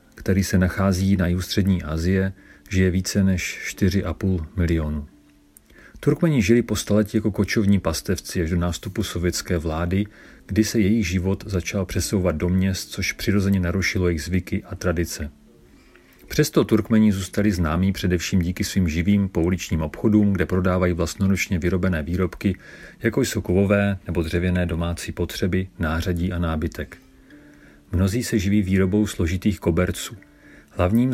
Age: 40-59